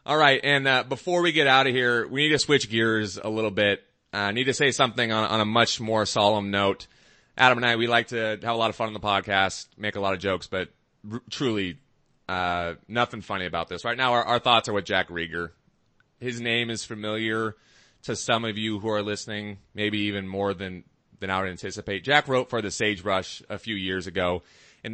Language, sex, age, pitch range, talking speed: English, male, 30-49, 95-115 Hz, 230 wpm